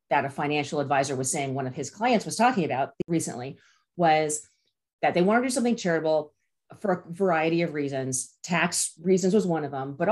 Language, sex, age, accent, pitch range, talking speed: English, female, 30-49, American, 150-205 Hz, 200 wpm